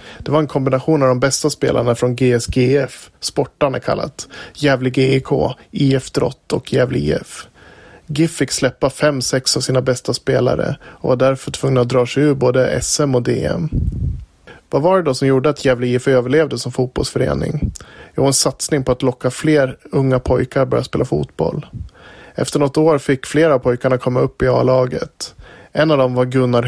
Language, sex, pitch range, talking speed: Swedish, male, 125-140 Hz, 180 wpm